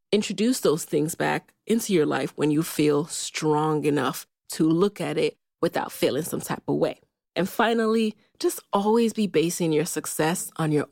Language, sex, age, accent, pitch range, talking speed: English, female, 20-39, American, 165-235 Hz, 175 wpm